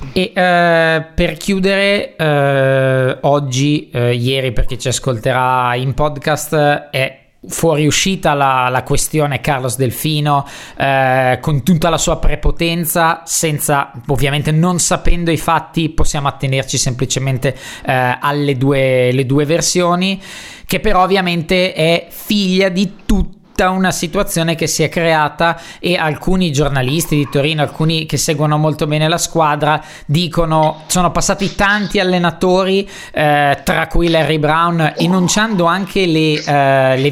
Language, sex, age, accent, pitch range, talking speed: Italian, male, 20-39, native, 145-180 Hz, 135 wpm